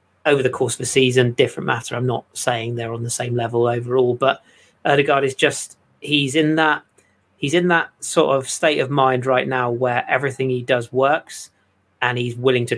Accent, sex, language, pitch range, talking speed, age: British, male, English, 120-140 Hz, 200 wpm, 30-49